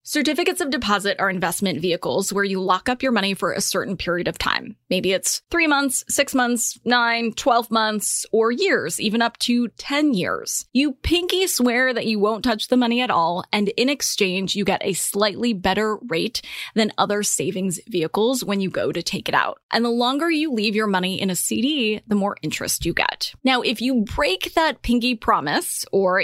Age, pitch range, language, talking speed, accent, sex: 20-39, 195-250 Hz, English, 200 wpm, American, female